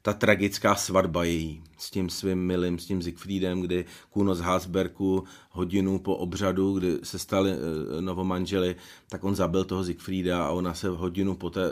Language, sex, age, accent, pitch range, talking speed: Czech, male, 40-59, native, 95-110 Hz, 165 wpm